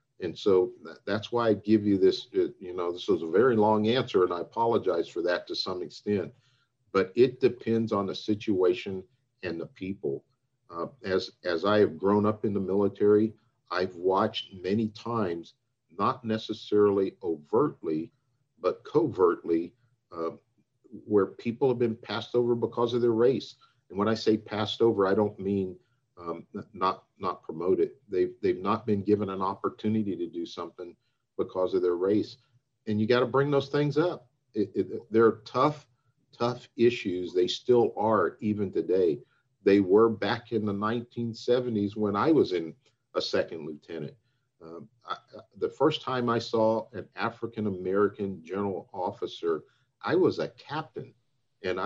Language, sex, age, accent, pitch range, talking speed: English, male, 50-69, American, 105-130 Hz, 165 wpm